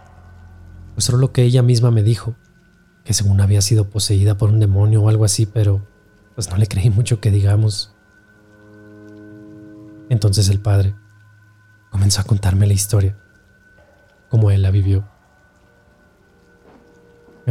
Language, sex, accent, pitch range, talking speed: Spanish, male, Mexican, 100-115 Hz, 135 wpm